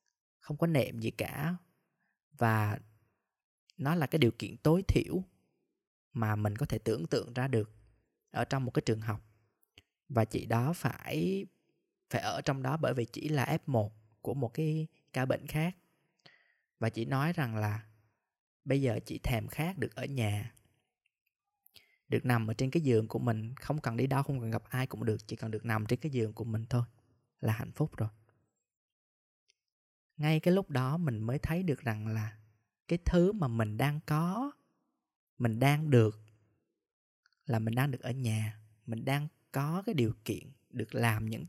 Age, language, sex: 20-39, Vietnamese, male